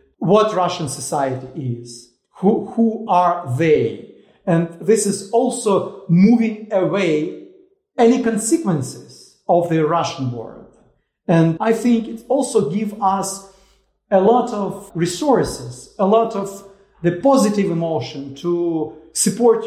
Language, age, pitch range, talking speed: English, 40-59, 165-210 Hz, 120 wpm